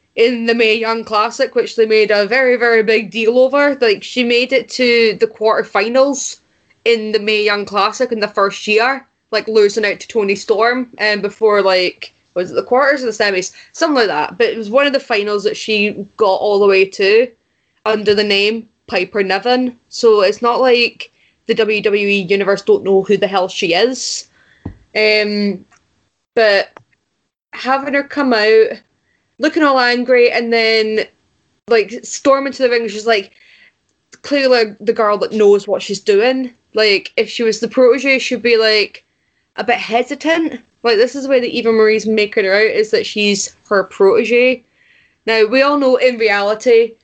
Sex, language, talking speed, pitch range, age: female, English, 180 wpm, 205-255 Hz, 20-39